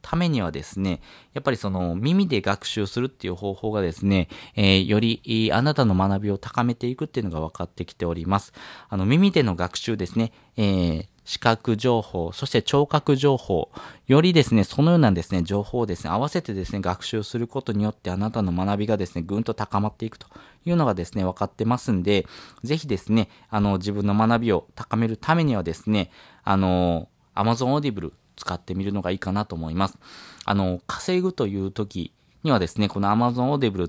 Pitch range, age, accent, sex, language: 95-125 Hz, 20-39, native, male, Japanese